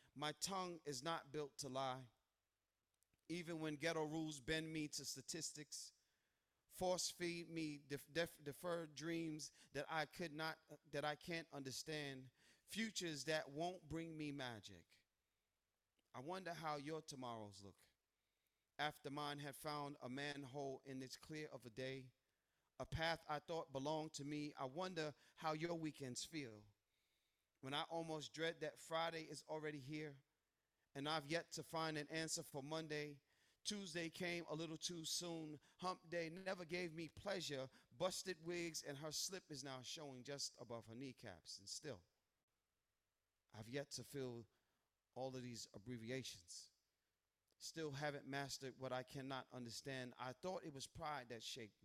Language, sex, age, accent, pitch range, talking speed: English, male, 40-59, American, 125-160 Hz, 155 wpm